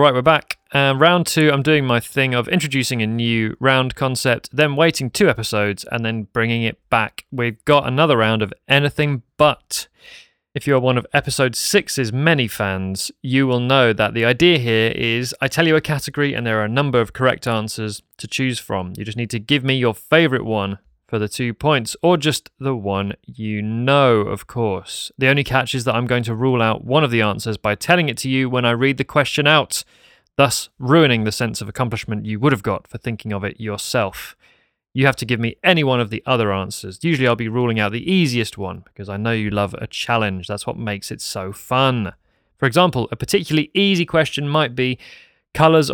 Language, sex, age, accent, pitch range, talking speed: English, male, 30-49, British, 110-140 Hz, 215 wpm